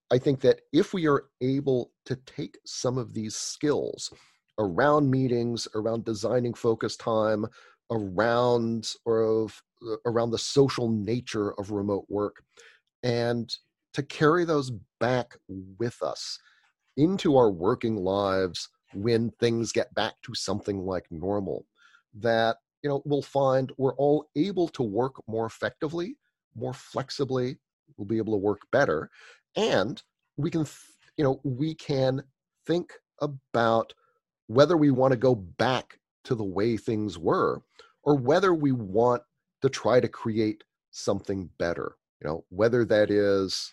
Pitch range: 105-135 Hz